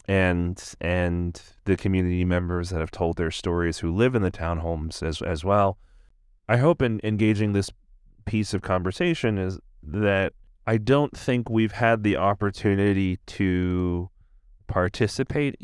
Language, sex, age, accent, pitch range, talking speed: English, male, 30-49, American, 90-110 Hz, 140 wpm